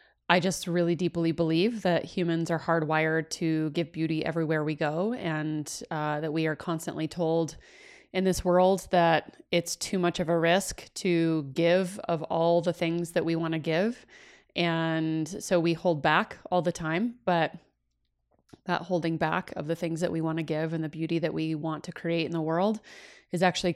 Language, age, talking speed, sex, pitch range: English, 30-49, 190 wpm, female, 165-200 Hz